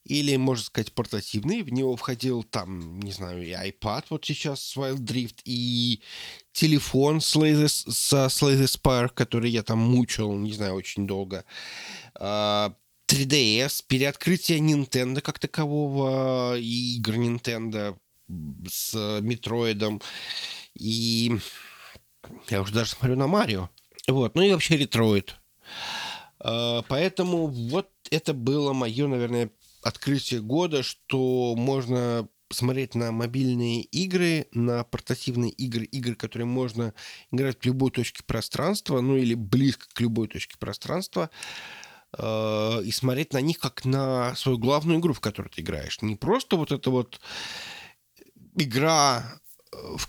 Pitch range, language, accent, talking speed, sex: 110-135 Hz, Russian, native, 125 wpm, male